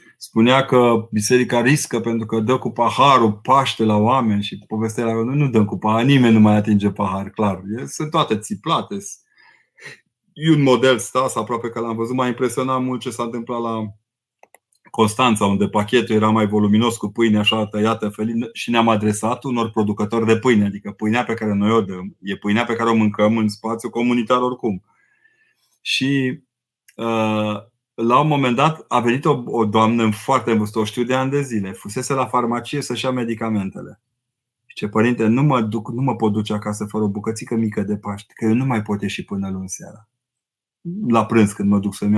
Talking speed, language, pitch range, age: 190 wpm, Romanian, 105-125 Hz, 30-49